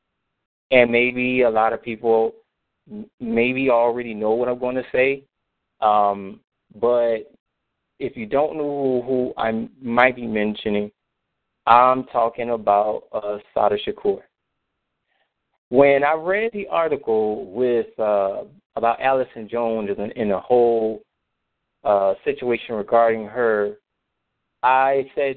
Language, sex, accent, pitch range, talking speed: English, male, American, 110-145 Hz, 120 wpm